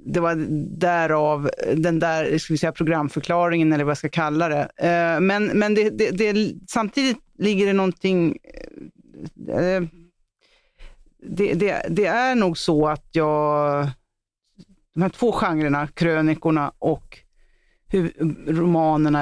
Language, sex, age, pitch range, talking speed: Swedish, female, 40-59, 150-185 Hz, 130 wpm